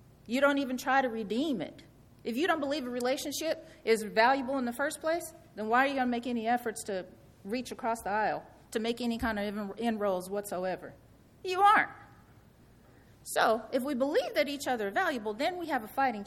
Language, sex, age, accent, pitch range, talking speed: English, female, 40-59, American, 215-280 Hz, 205 wpm